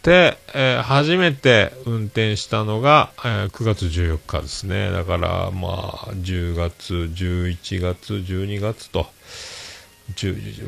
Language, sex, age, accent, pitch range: Japanese, male, 40-59, native, 90-125 Hz